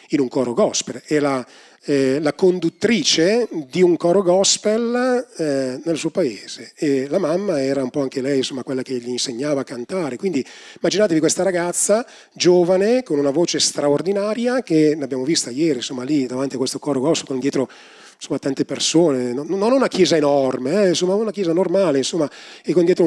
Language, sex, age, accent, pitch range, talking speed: Italian, male, 30-49, native, 130-180 Hz, 180 wpm